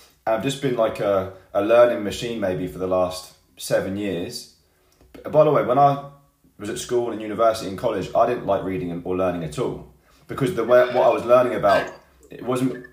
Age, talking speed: 20-39, 205 wpm